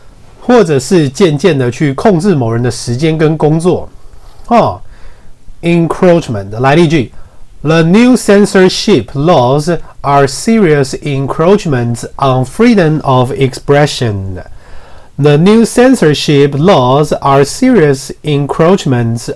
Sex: male